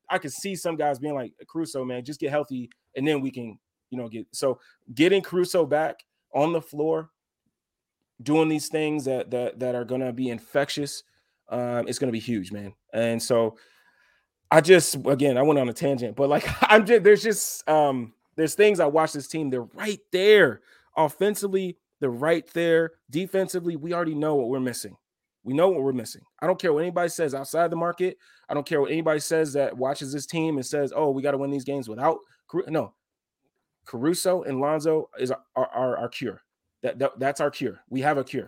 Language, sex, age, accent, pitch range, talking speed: English, male, 20-39, American, 130-170 Hz, 205 wpm